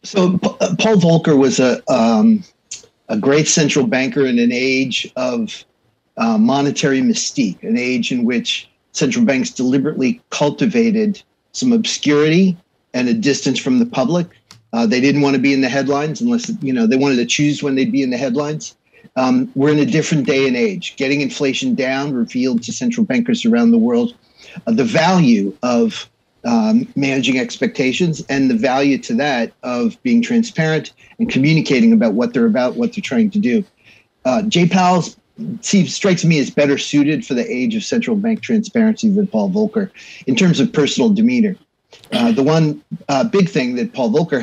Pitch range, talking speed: 140-230 Hz, 175 wpm